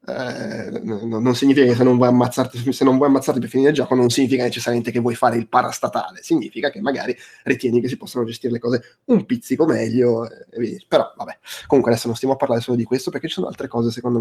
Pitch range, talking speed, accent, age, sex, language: 120-150 Hz, 240 wpm, native, 20-39, male, Italian